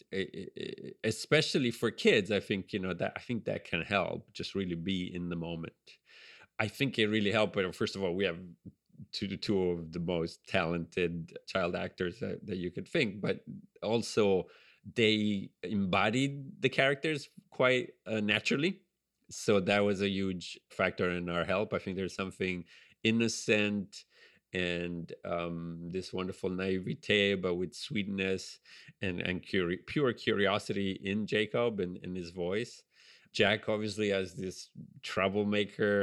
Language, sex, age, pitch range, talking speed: English, male, 30-49, 90-110 Hz, 150 wpm